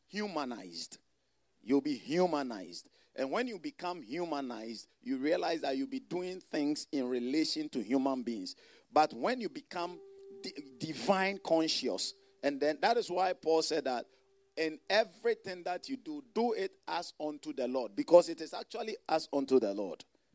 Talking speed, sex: 160 wpm, male